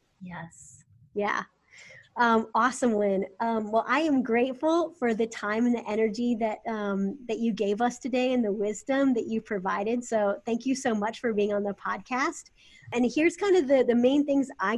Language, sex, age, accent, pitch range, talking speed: English, female, 30-49, American, 200-240 Hz, 195 wpm